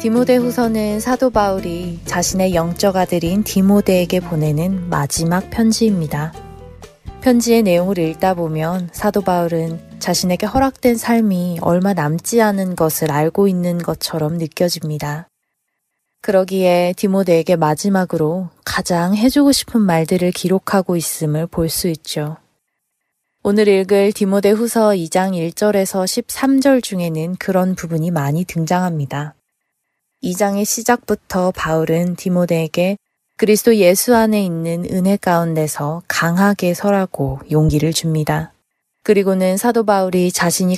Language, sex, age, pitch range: Korean, female, 20-39, 165-200 Hz